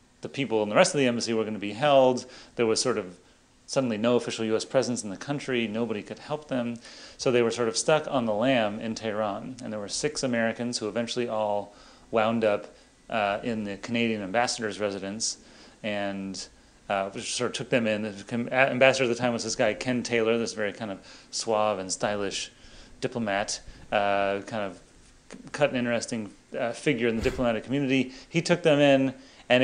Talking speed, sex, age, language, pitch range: 195 wpm, male, 30-49, English, 105-125 Hz